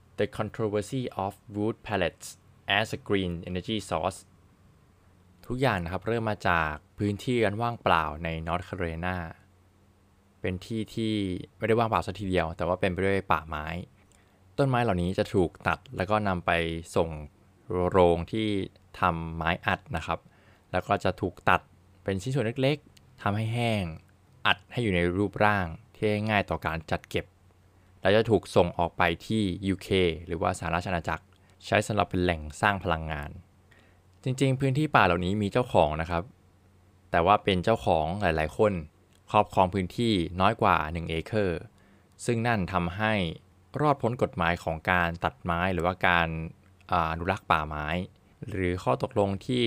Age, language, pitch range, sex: 20-39, Thai, 90-105 Hz, male